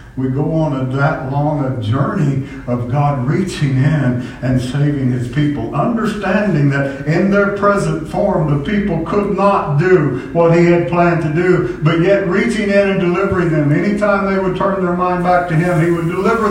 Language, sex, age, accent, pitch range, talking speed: English, male, 60-79, American, 125-170 Hz, 190 wpm